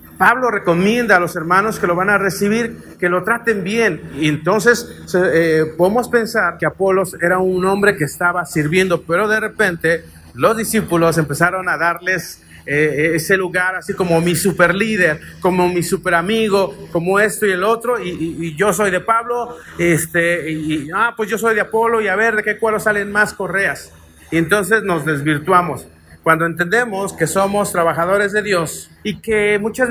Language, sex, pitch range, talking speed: Spanish, male, 170-215 Hz, 185 wpm